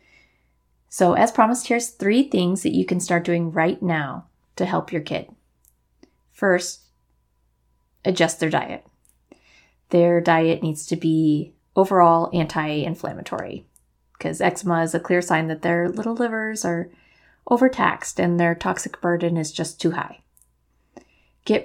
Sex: female